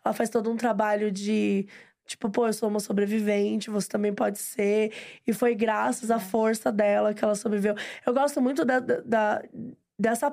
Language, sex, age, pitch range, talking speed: Portuguese, female, 20-39, 215-250 Hz, 170 wpm